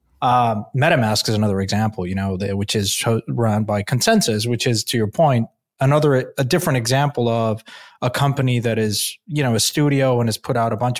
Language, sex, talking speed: English, male, 195 wpm